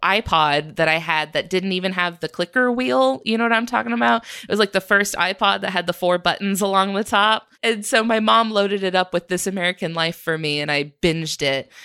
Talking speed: 245 wpm